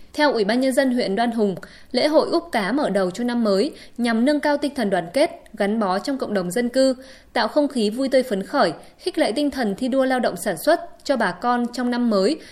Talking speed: 260 wpm